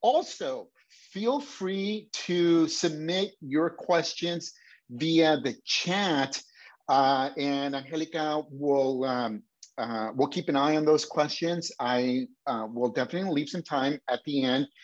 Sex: male